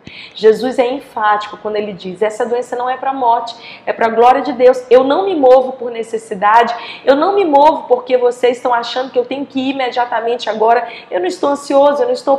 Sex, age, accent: female, 20-39, Brazilian